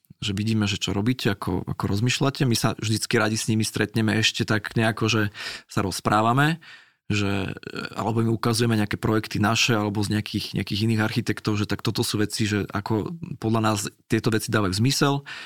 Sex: male